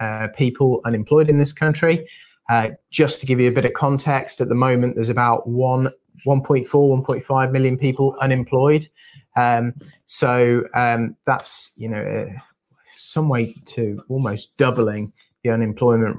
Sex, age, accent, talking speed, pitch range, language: male, 30-49, British, 150 wpm, 115-135 Hz, English